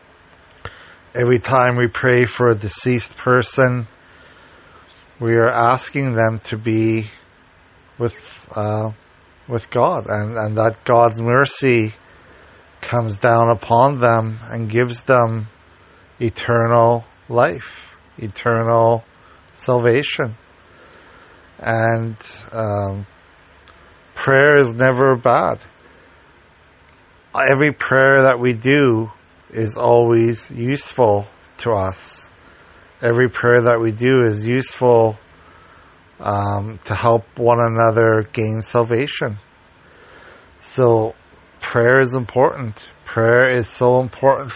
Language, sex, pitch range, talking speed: English, male, 100-125 Hz, 95 wpm